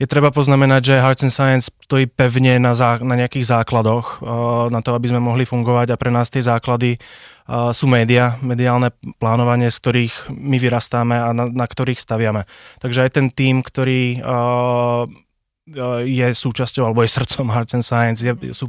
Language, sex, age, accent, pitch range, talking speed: Czech, male, 20-39, native, 115-125 Hz, 180 wpm